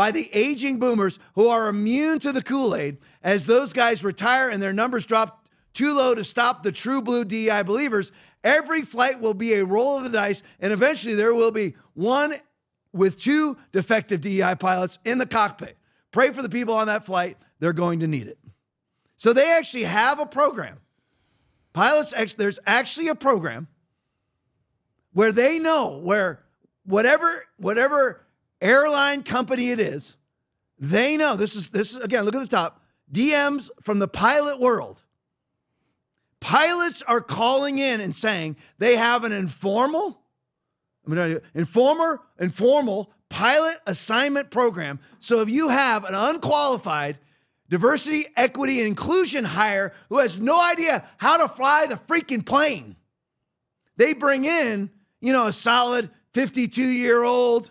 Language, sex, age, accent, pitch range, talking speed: English, male, 40-59, American, 195-275 Hz, 150 wpm